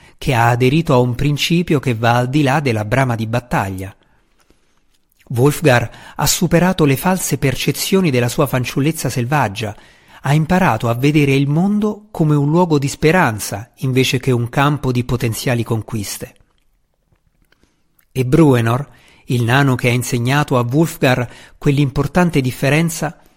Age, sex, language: 50-69, male, Italian